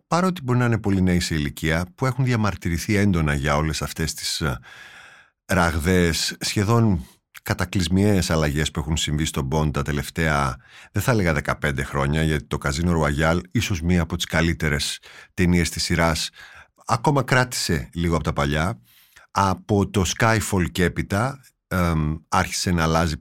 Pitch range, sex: 80-115 Hz, male